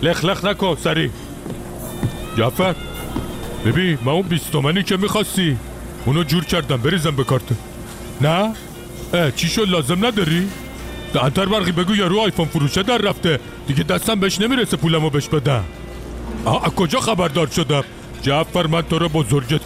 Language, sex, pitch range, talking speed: Persian, male, 130-185 Hz, 155 wpm